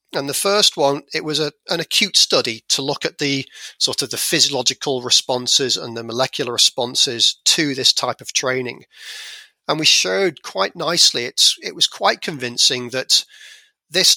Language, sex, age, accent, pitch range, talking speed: English, male, 40-59, British, 130-170 Hz, 170 wpm